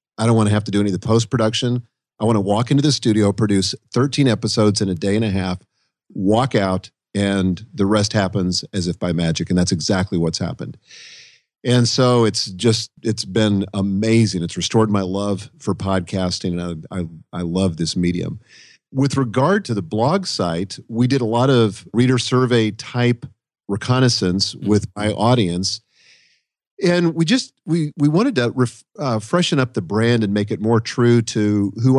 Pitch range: 95-120 Hz